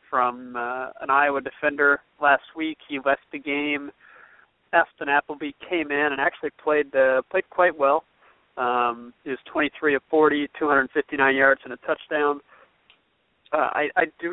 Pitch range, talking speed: 130-155 Hz, 155 wpm